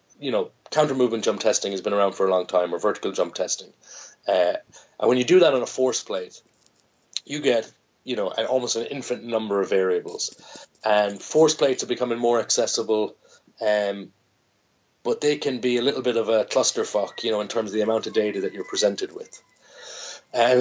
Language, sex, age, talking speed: English, male, 30-49, 205 wpm